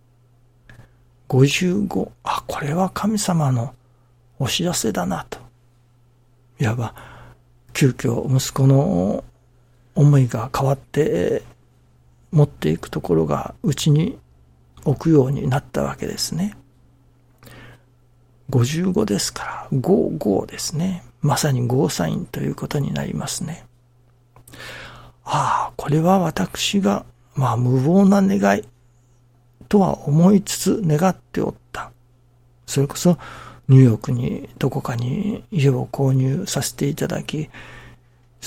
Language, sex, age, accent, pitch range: Japanese, male, 60-79, native, 120-150 Hz